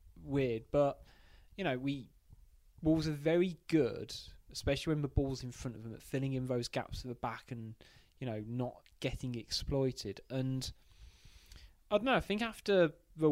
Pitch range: 115-140 Hz